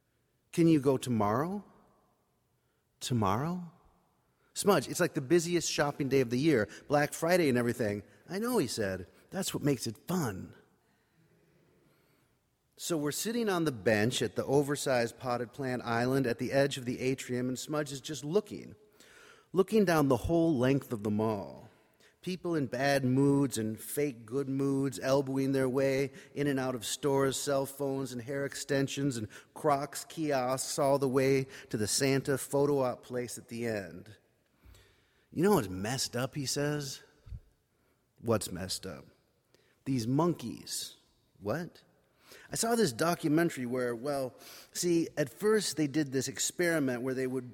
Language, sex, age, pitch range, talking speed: English, male, 40-59, 125-155 Hz, 155 wpm